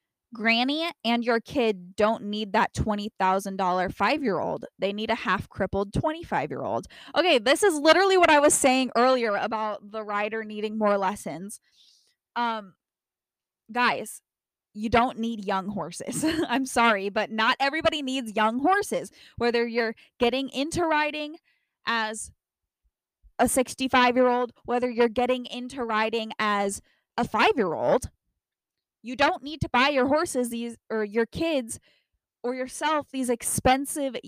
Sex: female